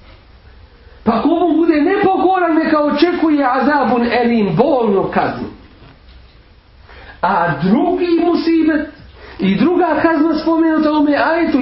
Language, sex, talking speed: English, male, 105 wpm